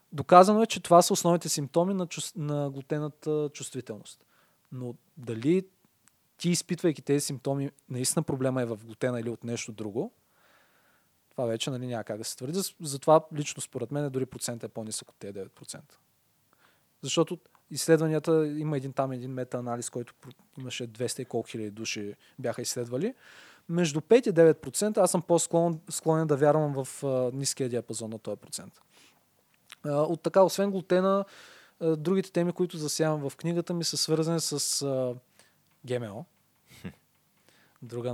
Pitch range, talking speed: 125-160 Hz, 150 wpm